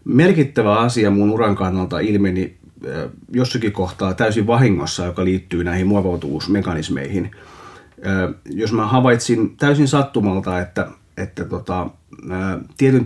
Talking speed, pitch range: 105 wpm, 95-120 Hz